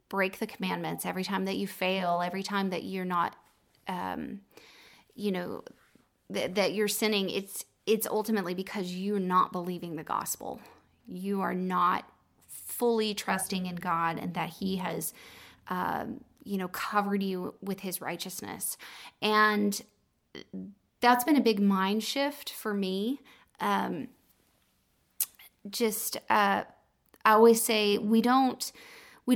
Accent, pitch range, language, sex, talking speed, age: American, 185-215 Hz, English, female, 135 wpm, 20-39